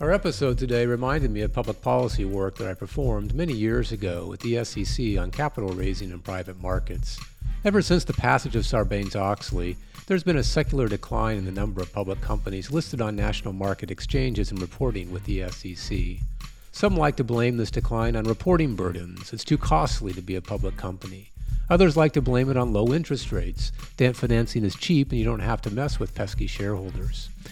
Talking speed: 195 wpm